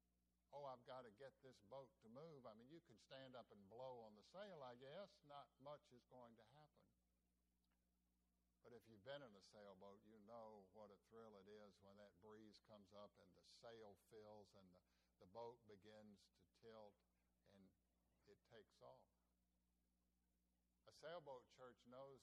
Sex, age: male, 60-79